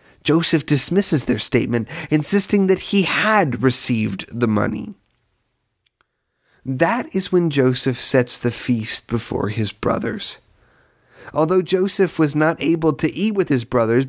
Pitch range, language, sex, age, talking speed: 120-165 Hz, English, male, 30-49, 130 wpm